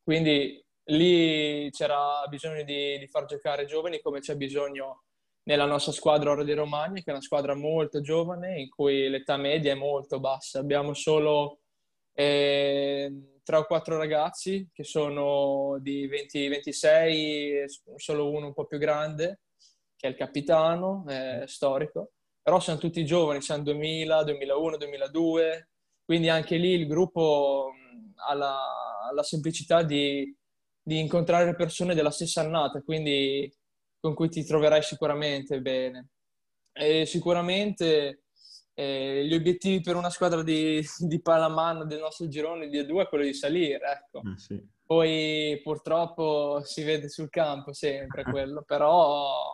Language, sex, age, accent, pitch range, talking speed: Italian, male, 20-39, native, 145-165 Hz, 140 wpm